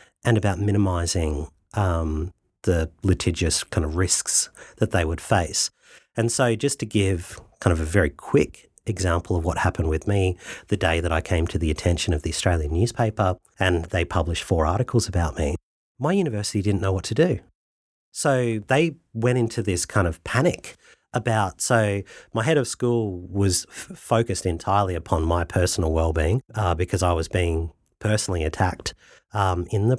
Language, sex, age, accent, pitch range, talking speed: English, male, 40-59, Australian, 85-110 Hz, 170 wpm